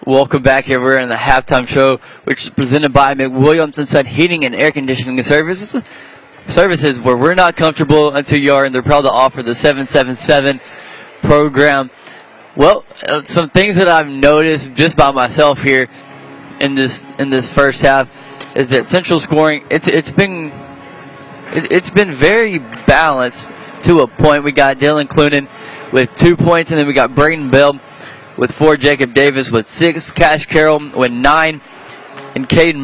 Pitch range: 135-155 Hz